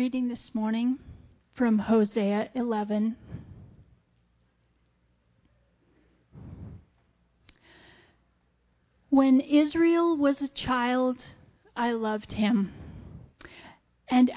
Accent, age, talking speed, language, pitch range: American, 40-59, 65 wpm, English, 210-265 Hz